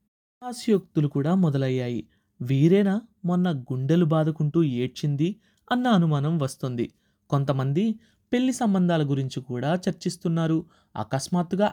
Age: 30-49